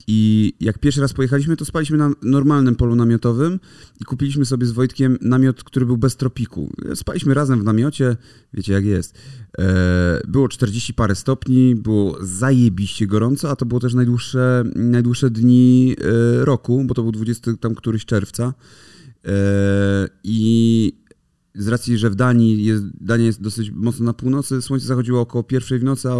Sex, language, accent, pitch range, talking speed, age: male, Polish, native, 110-130 Hz, 160 wpm, 30-49